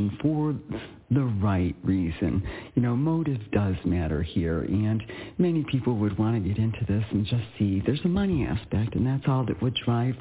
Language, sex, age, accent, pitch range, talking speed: English, male, 50-69, American, 105-140 Hz, 190 wpm